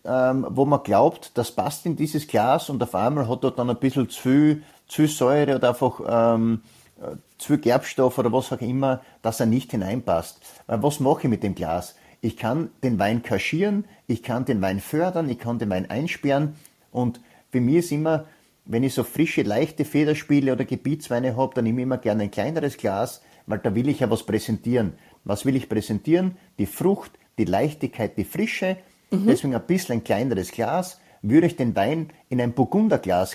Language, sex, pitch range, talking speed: German, male, 115-160 Hz, 195 wpm